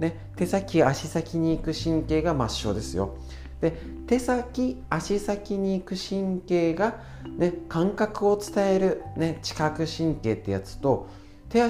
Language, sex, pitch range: Japanese, male, 110-170 Hz